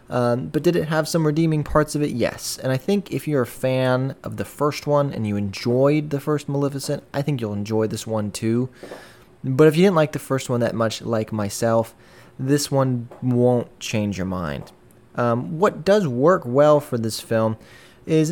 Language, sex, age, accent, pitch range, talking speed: English, male, 20-39, American, 110-145 Hz, 205 wpm